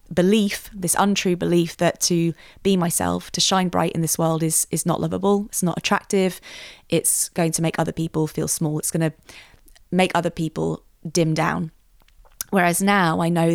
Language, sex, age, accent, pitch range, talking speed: English, female, 20-39, British, 165-185 Hz, 180 wpm